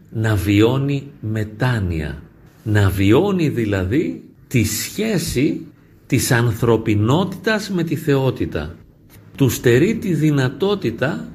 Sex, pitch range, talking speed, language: male, 105-145 Hz, 90 wpm, Greek